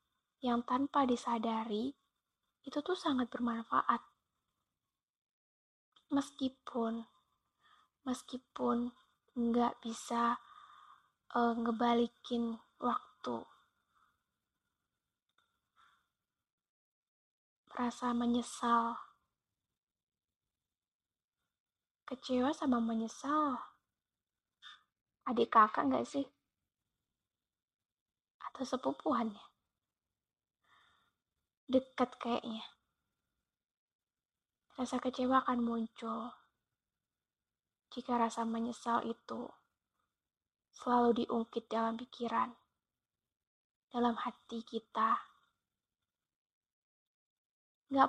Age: 20-39